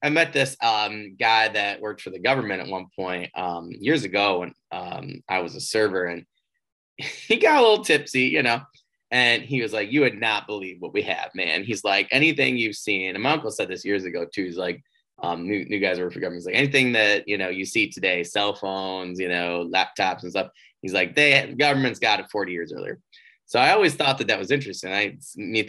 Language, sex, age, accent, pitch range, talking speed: English, male, 20-39, American, 95-130 Hz, 235 wpm